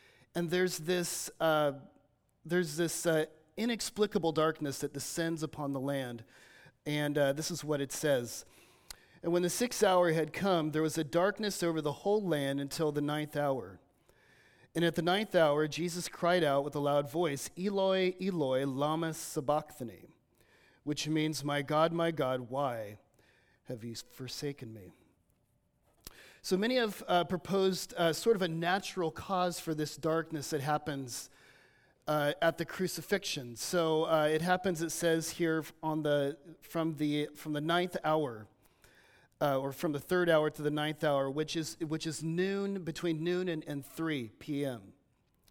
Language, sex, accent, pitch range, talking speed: English, male, American, 145-180 Hz, 160 wpm